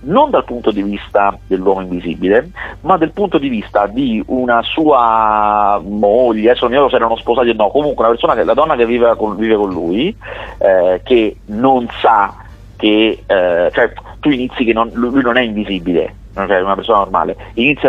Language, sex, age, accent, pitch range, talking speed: Italian, male, 30-49, native, 105-140 Hz, 185 wpm